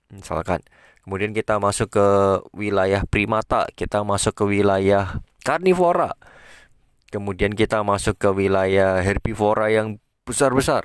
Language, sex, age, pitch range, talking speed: Indonesian, male, 20-39, 100-130 Hz, 110 wpm